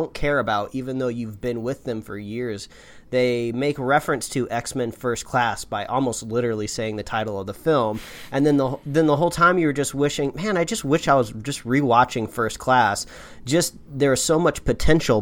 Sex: male